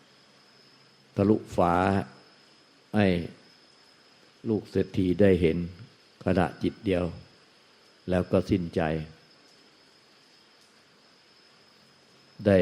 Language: Thai